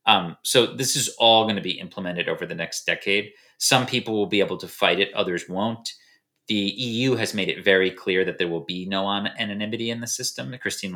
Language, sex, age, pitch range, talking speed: English, male, 30-49, 95-125 Hz, 220 wpm